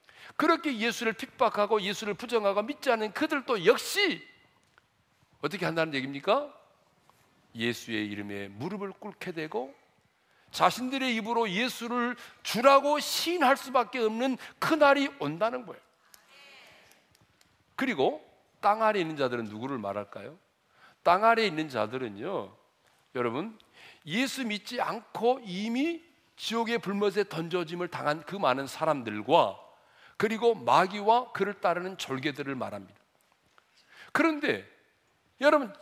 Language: Korean